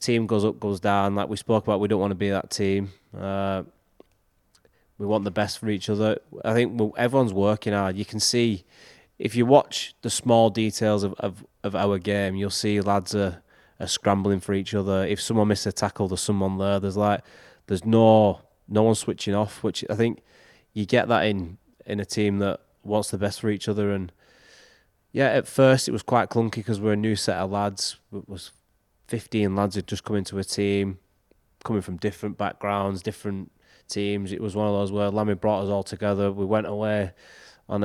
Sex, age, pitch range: male, 20-39, 95-105 Hz